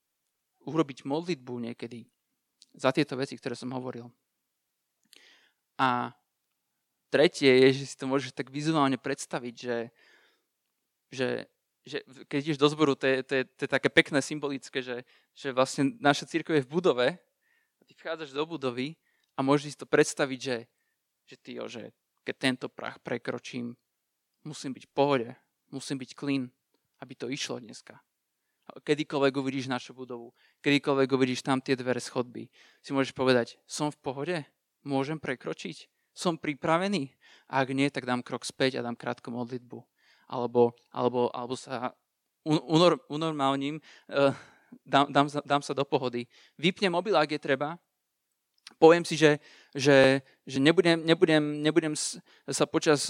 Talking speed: 150 wpm